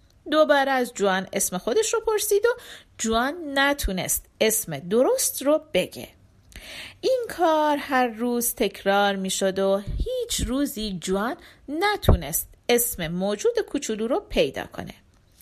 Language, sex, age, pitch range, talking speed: Persian, female, 40-59, 200-290 Hz, 120 wpm